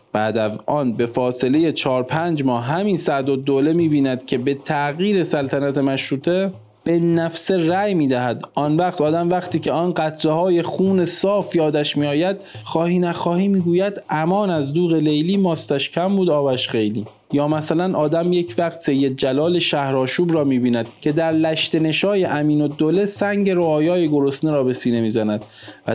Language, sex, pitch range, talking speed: Persian, male, 140-175 Hz, 175 wpm